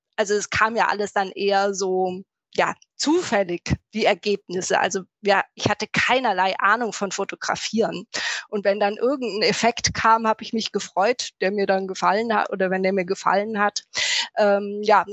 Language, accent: German, German